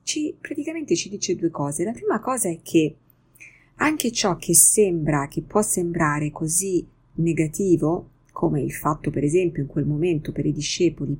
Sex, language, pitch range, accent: female, Italian, 160-220 Hz, native